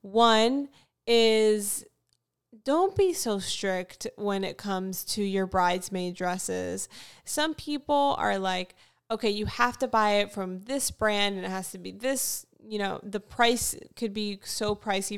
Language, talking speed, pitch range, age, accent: English, 160 wpm, 195-230 Hz, 10-29, American